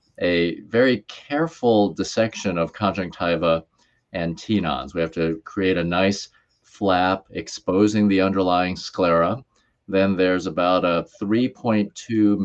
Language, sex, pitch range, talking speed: English, male, 85-105 Hz, 115 wpm